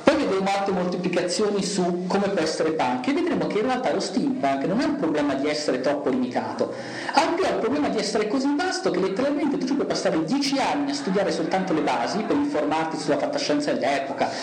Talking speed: 200 wpm